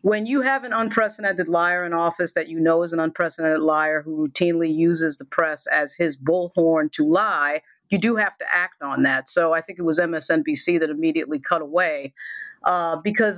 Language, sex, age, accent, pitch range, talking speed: English, female, 40-59, American, 170-220 Hz, 195 wpm